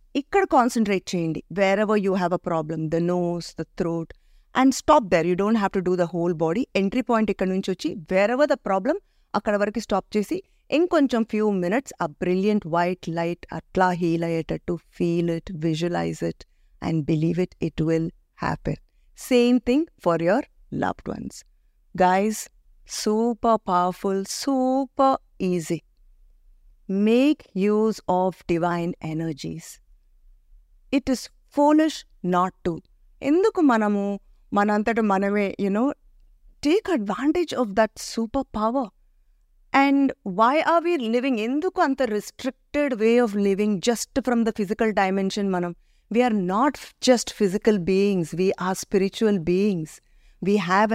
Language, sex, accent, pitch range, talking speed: Telugu, female, native, 180-250 Hz, 140 wpm